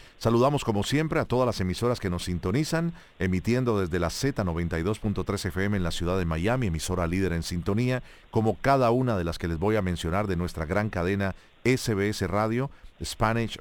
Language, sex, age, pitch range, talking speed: Spanish, male, 40-59, 90-115 Hz, 180 wpm